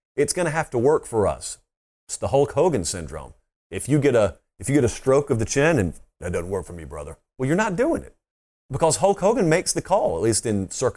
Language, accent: English, American